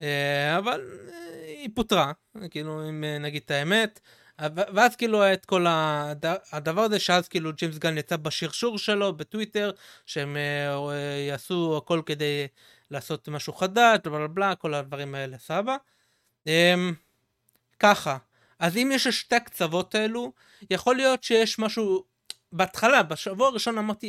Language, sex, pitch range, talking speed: Hebrew, male, 155-215 Hz, 120 wpm